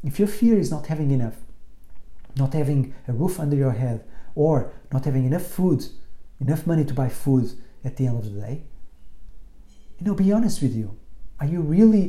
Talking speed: 195 wpm